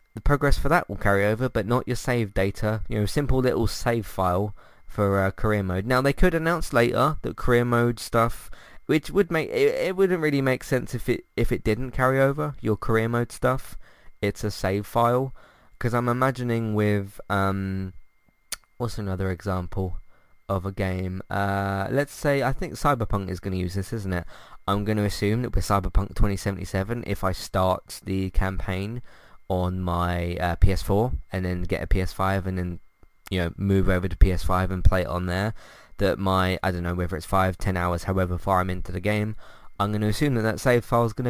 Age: 20-39